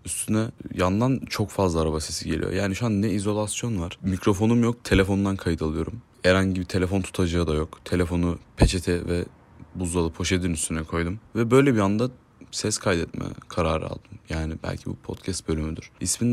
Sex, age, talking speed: male, 30-49, 165 wpm